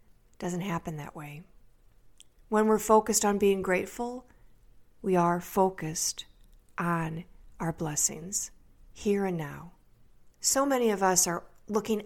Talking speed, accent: 125 wpm, American